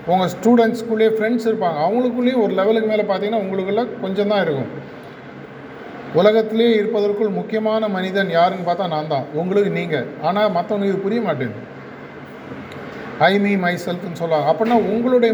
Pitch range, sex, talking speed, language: 165-215 Hz, male, 130 wpm, Tamil